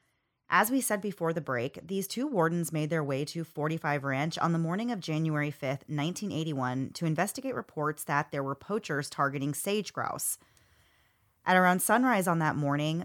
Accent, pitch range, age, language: American, 145-185 Hz, 30-49, English